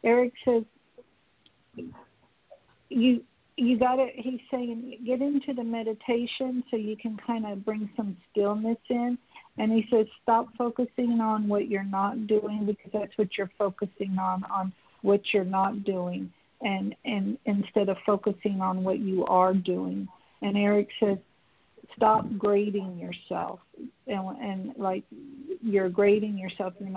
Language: English